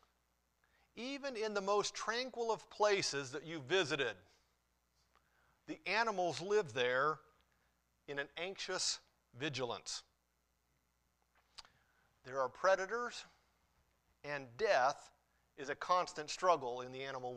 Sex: male